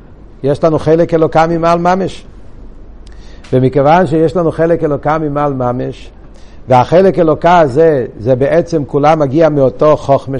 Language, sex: Hebrew, male